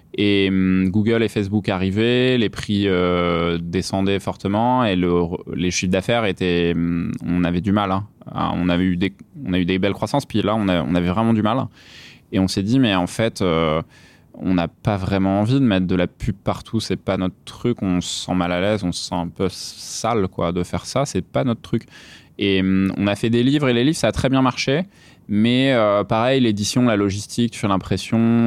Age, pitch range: 20-39, 90-115 Hz